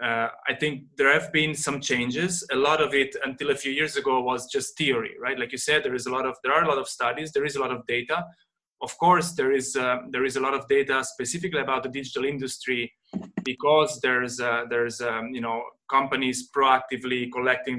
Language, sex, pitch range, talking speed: English, male, 125-145 Hz, 225 wpm